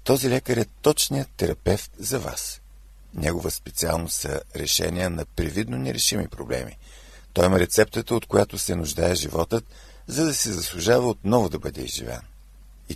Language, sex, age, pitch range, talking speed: Bulgarian, male, 50-69, 80-110 Hz, 150 wpm